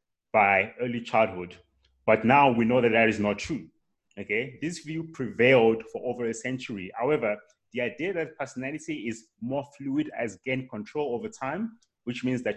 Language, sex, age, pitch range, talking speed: English, male, 30-49, 110-150 Hz, 170 wpm